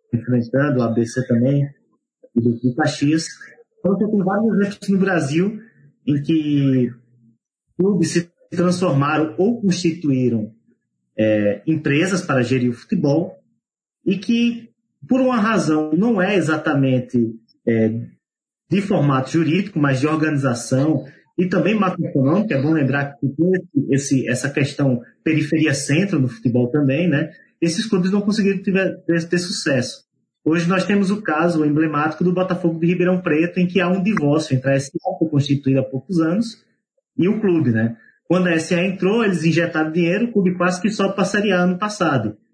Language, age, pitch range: Portuguese, 30-49, 140-185 Hz